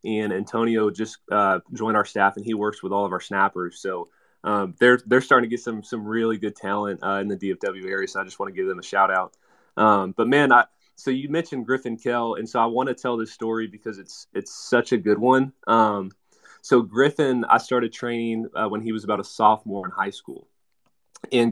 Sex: male